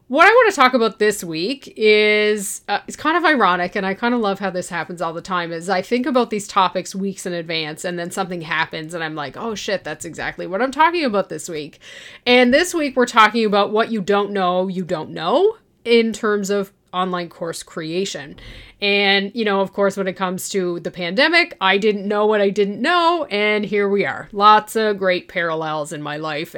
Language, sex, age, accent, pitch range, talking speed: English, female, 30-49, American, 180-230 Hz, 225 wpm